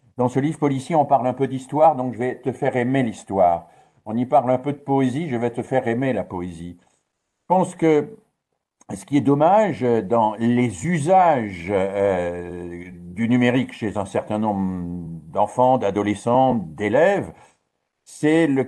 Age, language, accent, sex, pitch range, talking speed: 50-69, French, French, male, 115-150 Hz, 165 wpm